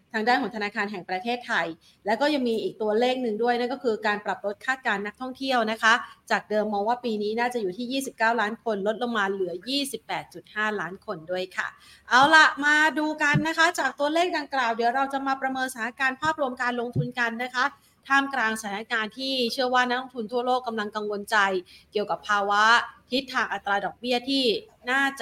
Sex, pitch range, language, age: female, 205-250 Hz, Thai, 30-49